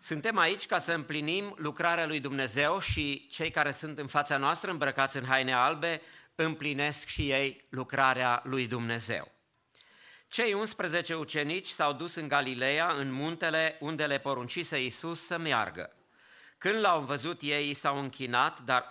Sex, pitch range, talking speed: male, 140-175 Hz, 150 wpm